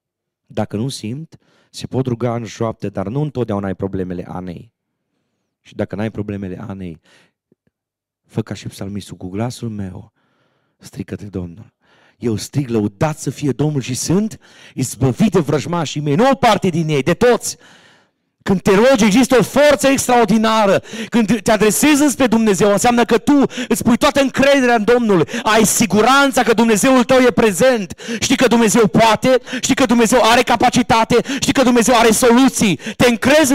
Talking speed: 160 wpm